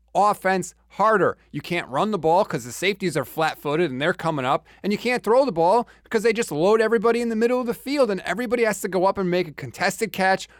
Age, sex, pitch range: 30-49, male, 155-220 Hz